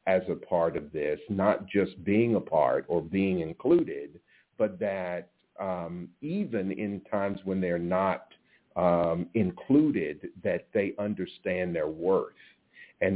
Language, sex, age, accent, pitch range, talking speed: English, male, 50-69, American, 90-105 Hz, 135 wpm